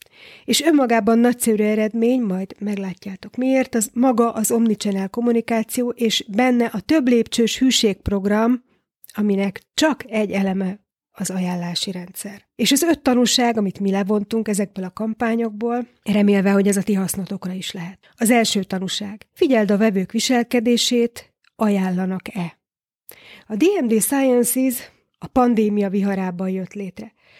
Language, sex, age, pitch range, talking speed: Hungarian, female, 30-49, 200-235 Hz, 125 wpm